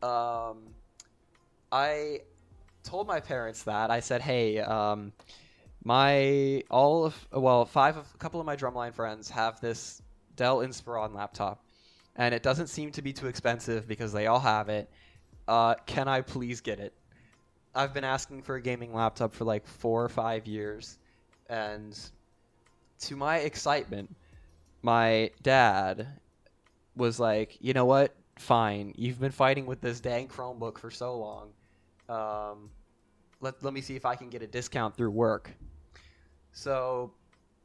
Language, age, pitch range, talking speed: English, 10-29, 105-125 Hz, 150 wpm